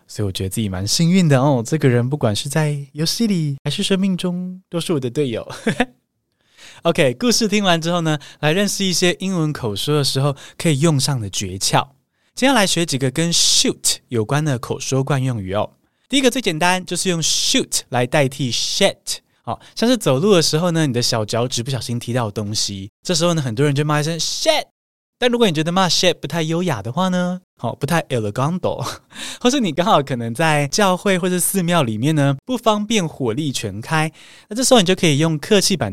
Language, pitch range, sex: Chinese, 130-190 Hz, male